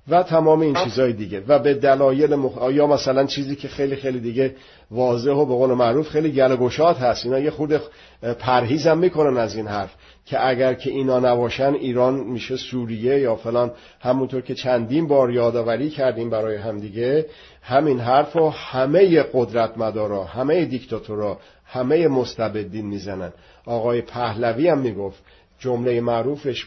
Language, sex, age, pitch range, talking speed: English, male, 50-69, 115-135 Hz, 145 wpm